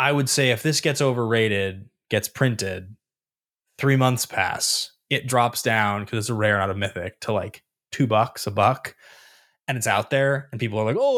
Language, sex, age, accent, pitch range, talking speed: English, male, 20-39, American, 110-150 Hz, 200 wpm